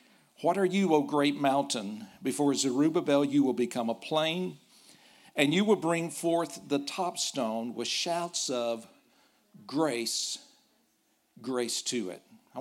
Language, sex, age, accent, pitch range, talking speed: English, male, 50-69, American, 125-170 Hz, 140 wpm